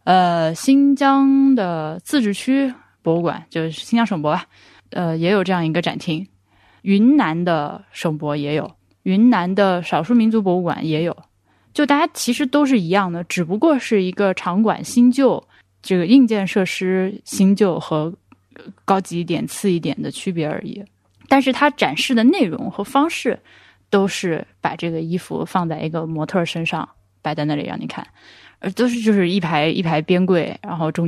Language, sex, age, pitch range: Chinese, female, 20-39, 170-230 Hz